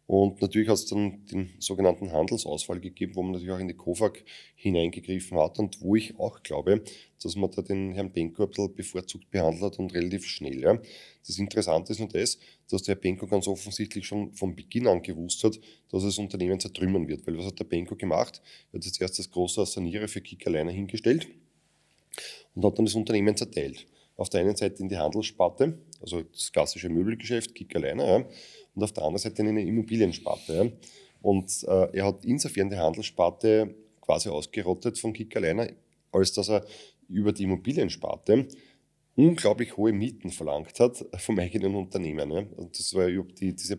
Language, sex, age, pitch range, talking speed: German, male, 30-49, 90-110 Hz, 180 wpm